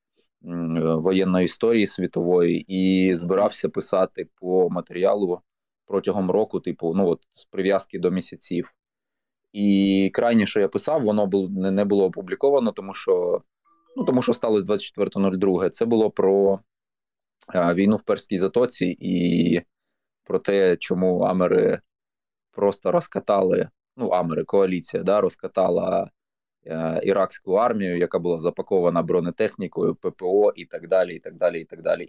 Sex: male